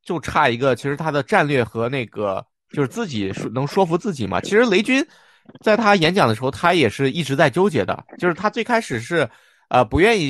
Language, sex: Chinese, male